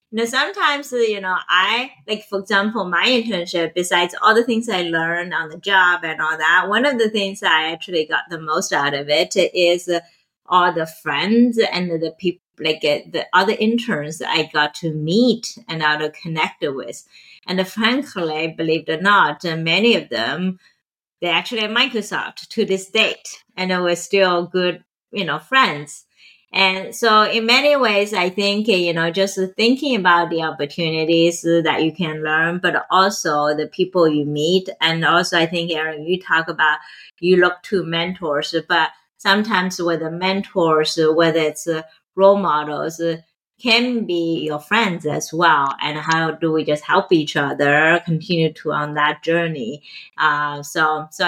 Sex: female